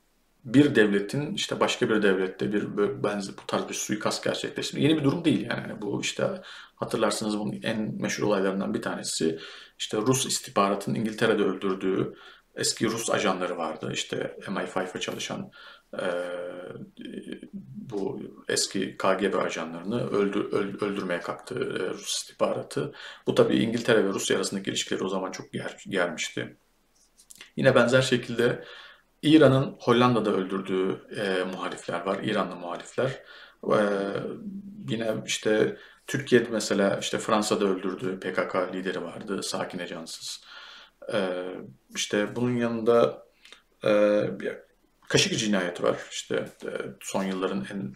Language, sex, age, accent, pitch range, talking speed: English, male, 40-59, Turkish, 95-135 Hz, 125 wpm